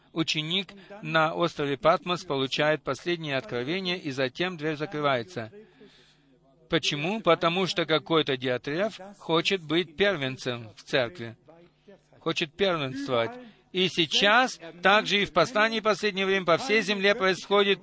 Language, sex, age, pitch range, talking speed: Russian, male, 50-69, 150-195 Hz, 120 wpm